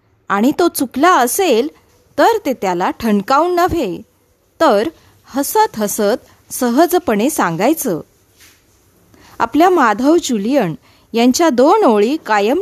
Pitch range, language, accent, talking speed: 195-300 Hz, Marathi, native, 100 wpm